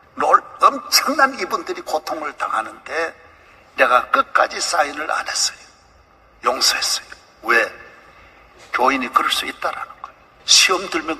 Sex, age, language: male, 60-79, English